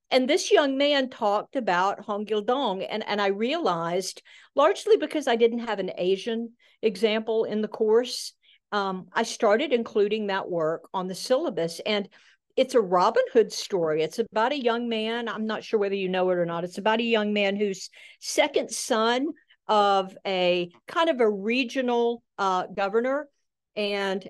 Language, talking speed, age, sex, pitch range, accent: English, 170 wpm, 50-69, female, 185-225 Hz, American